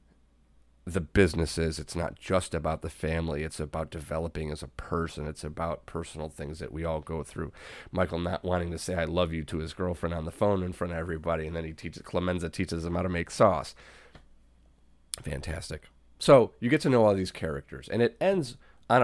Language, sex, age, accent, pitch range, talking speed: English, male, 30-49, American, 80-100 Hz, 205 wpm